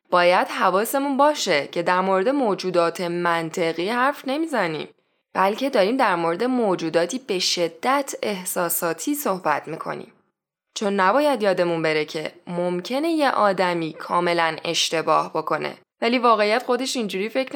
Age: 10-29